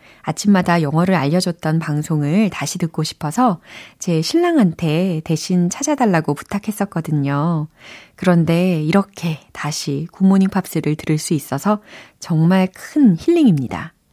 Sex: female